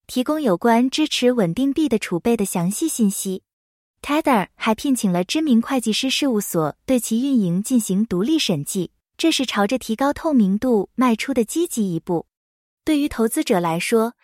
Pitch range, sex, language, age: 195-275 Hz, female, English, 20-39